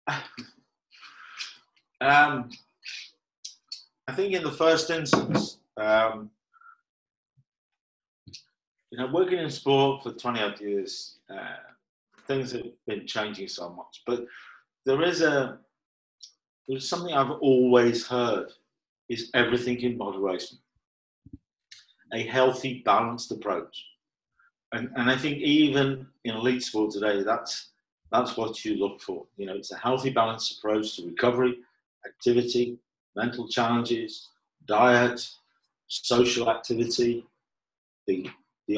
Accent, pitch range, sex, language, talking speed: British, 120-135 Hz, male, English, 115 wpm